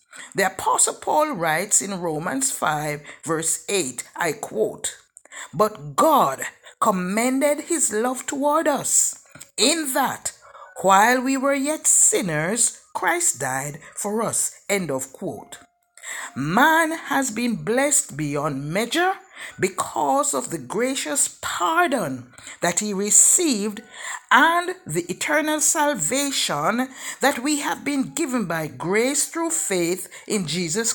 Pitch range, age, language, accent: 200-300 Hz, 60-79, English, Nigerian